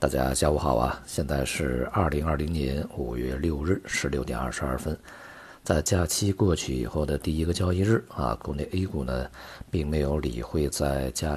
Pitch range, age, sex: 70-95 Hz, 50-69, male